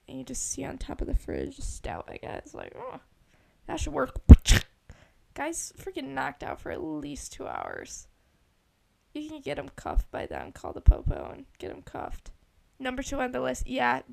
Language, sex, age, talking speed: English, female, 10-29, 190 wpm